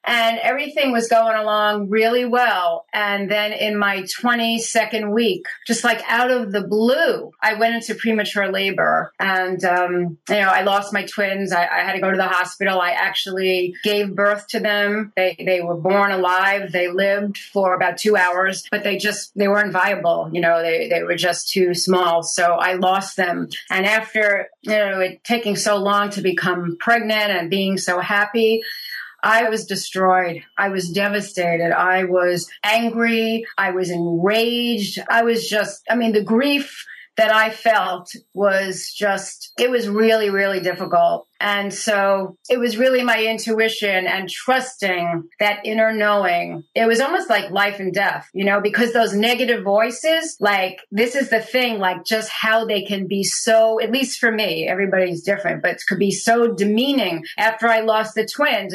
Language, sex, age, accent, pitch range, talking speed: English, female, 30-49, American, 190-230 Hz, 175 wpm